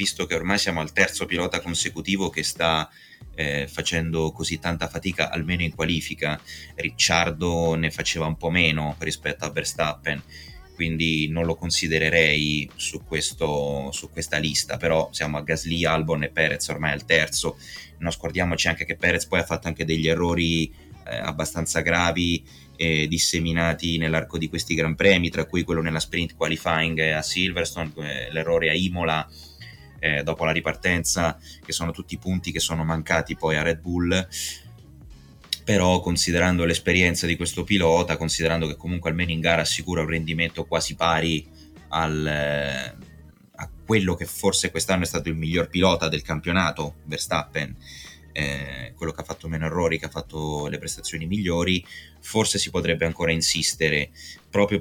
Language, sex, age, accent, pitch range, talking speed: Italian, male, 20-39, native, 80-85 Hz, 155 wpm